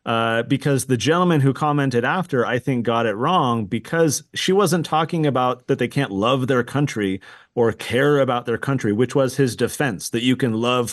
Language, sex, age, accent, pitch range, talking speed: English, male, 30-49, American, 115-145 Hz, 200 wpm